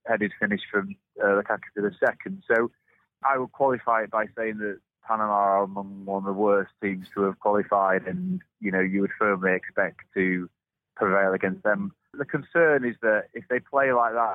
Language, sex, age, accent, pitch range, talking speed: English, male, 30-49, British, 95-115 Hz, 195 wpm